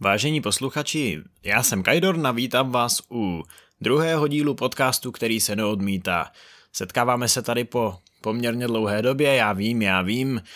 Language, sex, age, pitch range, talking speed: Czech, male, 20-39, 105-135 Hz, 140 wpm